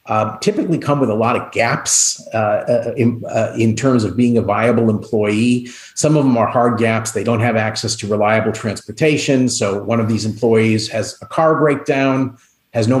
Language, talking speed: English, 195 wpm